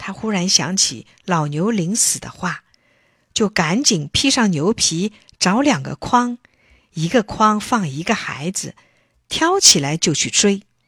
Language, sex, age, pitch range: Chinese, female, 50-69, 165-250 Hz